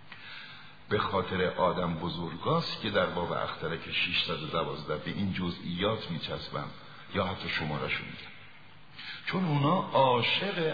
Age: 60-79